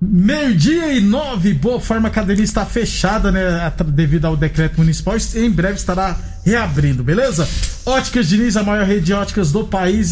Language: Portuguese